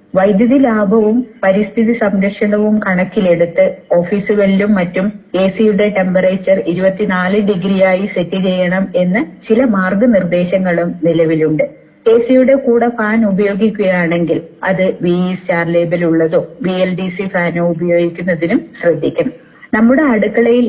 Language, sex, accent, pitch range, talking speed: Malayalam, female, native, 175-215 Hz, 100 wpm